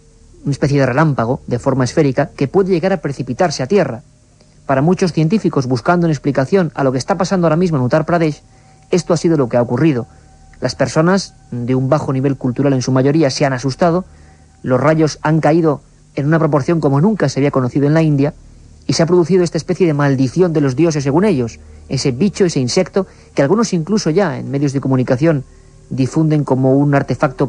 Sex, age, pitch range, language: male, 50-69, 130-170 Hz, Spanish